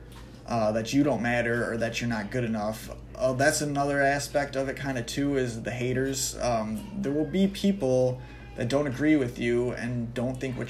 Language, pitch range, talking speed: English, 115-140 Hz, 210 wpm